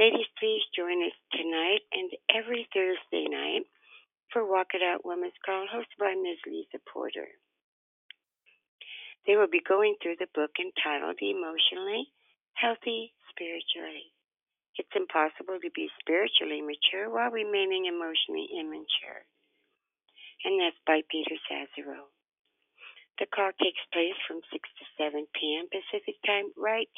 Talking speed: 130 wpm